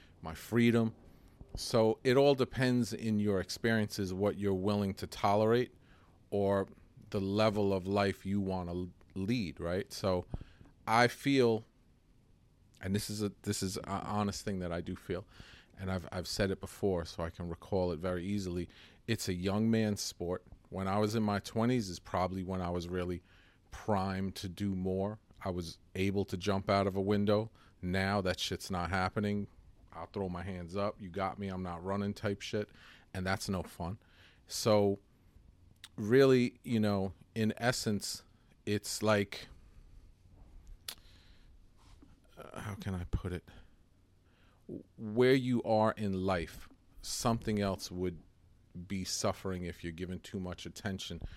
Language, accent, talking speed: English, American, 160 wpm